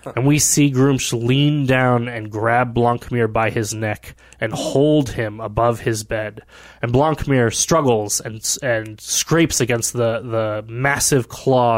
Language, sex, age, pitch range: English, male, 20-39, 110-140 Hz